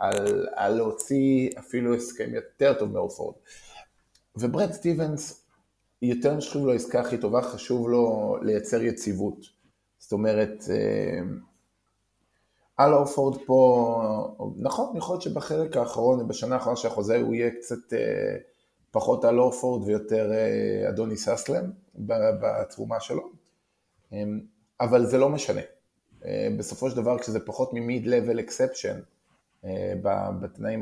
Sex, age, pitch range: male, 20-39, 105-130 Hz